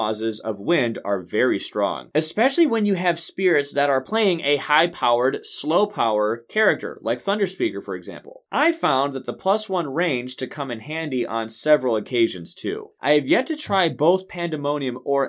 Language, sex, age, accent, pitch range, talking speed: English, male, 20-39, American, 115-180 Hz, 175 wpm